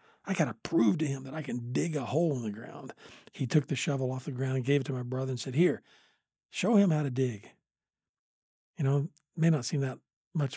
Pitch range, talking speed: 130-165 Hz, 245 wpm